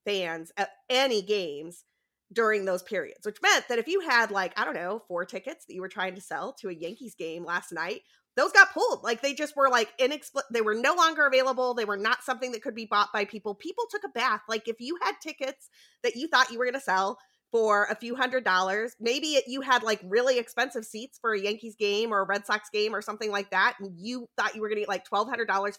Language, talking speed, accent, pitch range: English, 250 wpm, American, 200-260 Hz